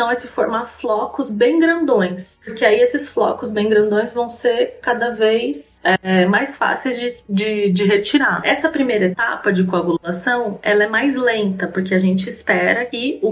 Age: 20-39